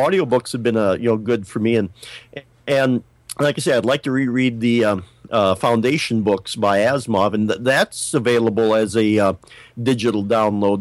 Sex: male